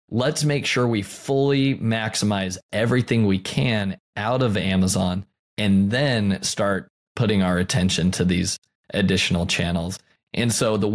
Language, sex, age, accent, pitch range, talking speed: English, male, 20-39, American, 100-125 Hz, 135 wpm